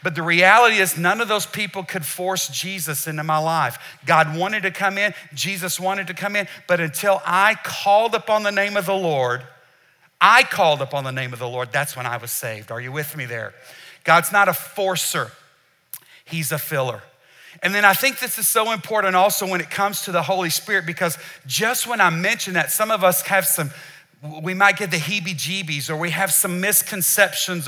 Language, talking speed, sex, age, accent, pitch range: English, 210 wpm, male, 50-69, American, 155-205 Hz